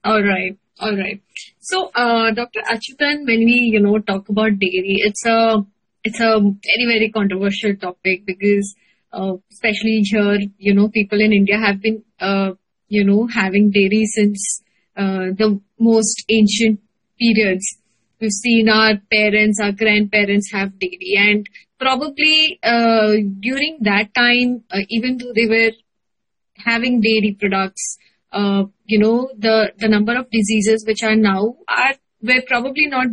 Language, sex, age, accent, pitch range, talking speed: English, female, 20-39, Indian, 205-230 Hz, 150 wpm